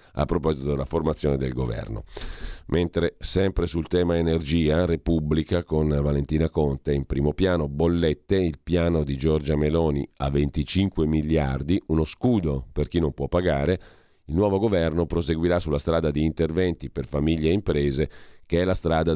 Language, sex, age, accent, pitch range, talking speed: Italian, male, 50-69, native, 75-85 Hz, 155 wpm